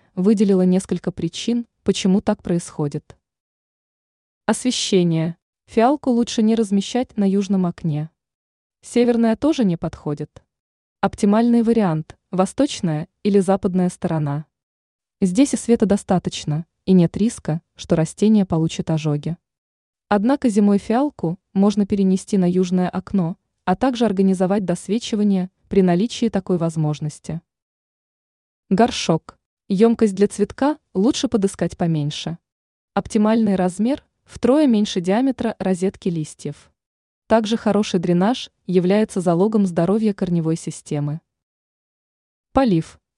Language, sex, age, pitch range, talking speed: Russian, female, 20-39, 170-225 Hz, 105 wpm